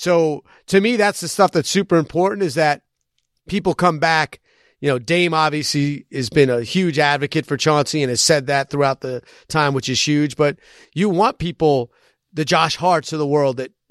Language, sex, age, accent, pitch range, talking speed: English, male, 30-49, American, 140-175 Hz, 200 wpm